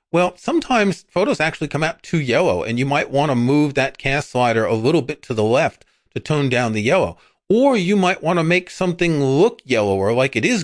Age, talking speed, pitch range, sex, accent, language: 40-59, 225 wpm, 115-155 Hz, male, American, English